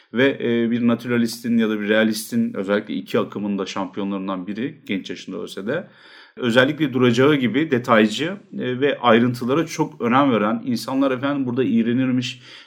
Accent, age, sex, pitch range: native, 40-59, male, 115-135 Hz